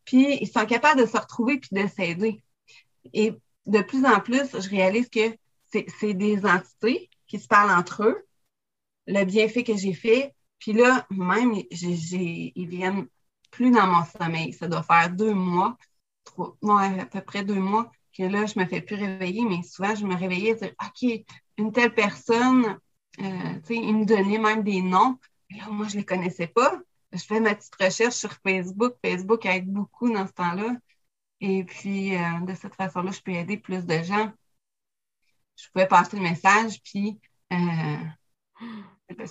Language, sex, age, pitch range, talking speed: French, female, 30-49, 180-220 Hz, 190 wpm